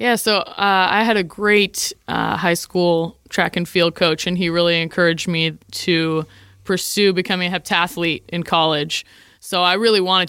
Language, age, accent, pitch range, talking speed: English, 20-39, American, 165-190 Hz, 175 wpm